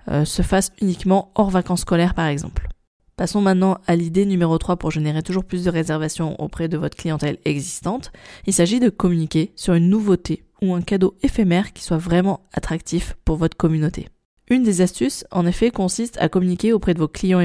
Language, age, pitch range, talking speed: French, 20-39, 160-185 Hz, 190 wpm